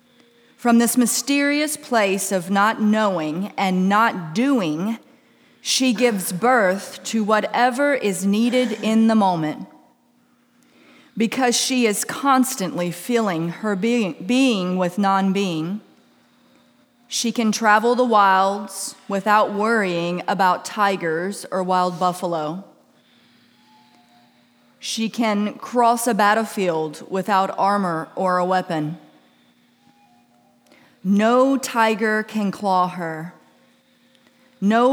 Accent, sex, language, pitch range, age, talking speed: American, female, English, 185-240 Hz, 40-59, 100 wpm